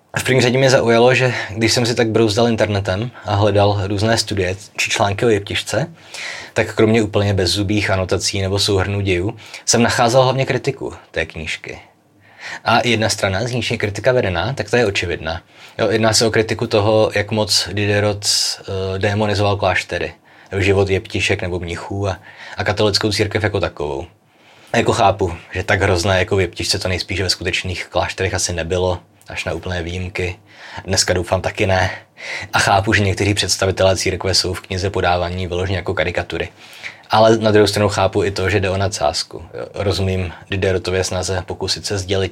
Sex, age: male, 20-39